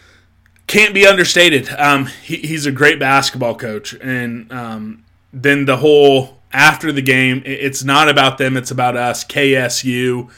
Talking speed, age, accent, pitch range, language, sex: 155 wpm, 20-39, American, 120-145 Hz, English, male